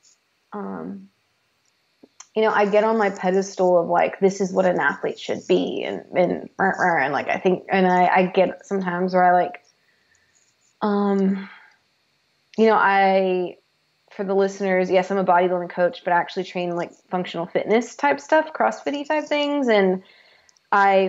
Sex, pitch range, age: female, 185-210 Hz, 20-39